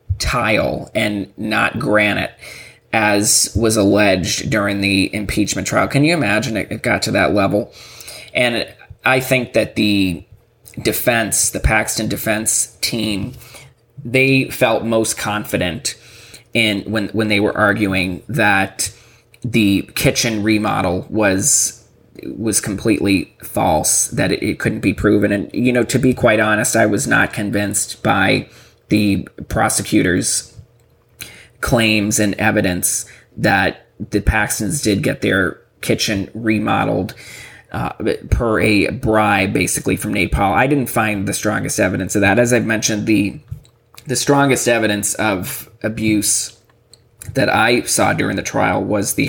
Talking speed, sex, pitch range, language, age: 135 wpm, male, 100-120 Hz, English, 20-39